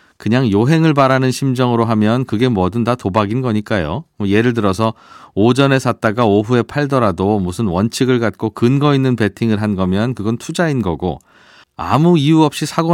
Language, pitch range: Korean, 105-150 Hz